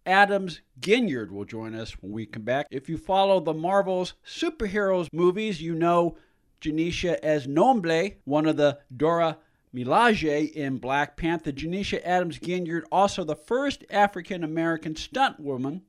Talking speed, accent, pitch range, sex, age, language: 140 wpm, American, 145-195 Hz, male, 50-69, English